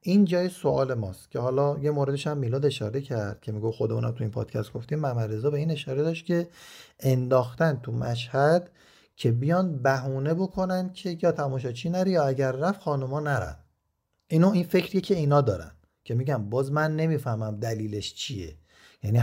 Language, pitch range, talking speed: Persian, 115-155 Hz, 175 wpm